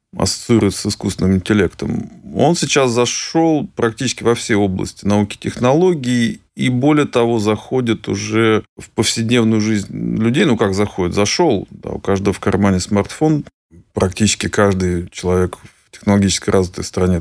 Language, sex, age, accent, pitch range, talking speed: Russian, male, 30-49, native, 100-120 Hz, 140 wpm